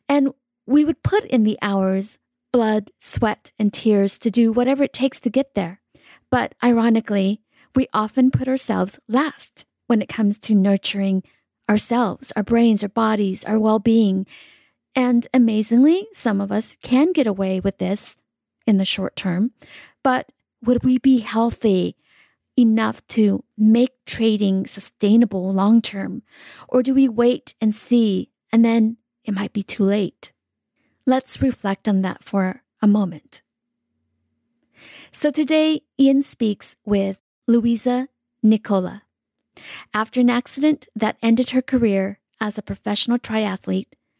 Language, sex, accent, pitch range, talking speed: English, female, American, 205-250 Hz, 135 wpm